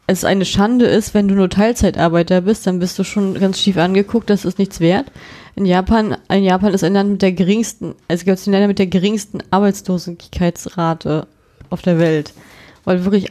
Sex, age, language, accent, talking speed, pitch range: female, 20-39, German, German, 205 wpm, 185-215 Hz